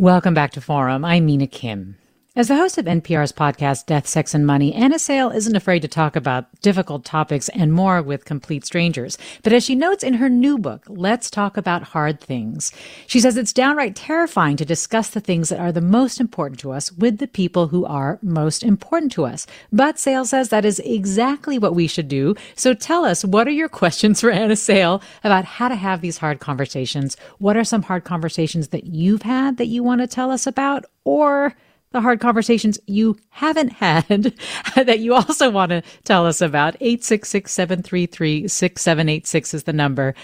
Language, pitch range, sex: English, 150-230 Hz, female